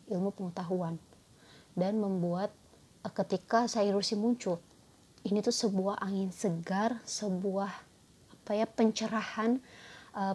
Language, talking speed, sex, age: Indonesian, 105 wpm, female, 30-49